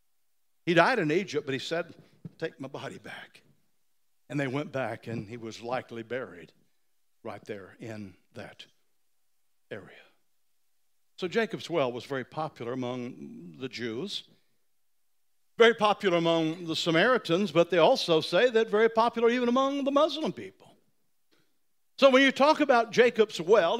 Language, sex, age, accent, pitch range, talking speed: English, male, 60-79, American, 160-260 Hz, 145 wpm